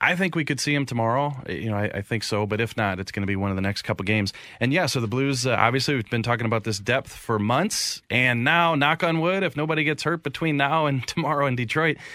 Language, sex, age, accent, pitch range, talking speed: English, male, 30-49, American, 110-135 Hz, 275 wpm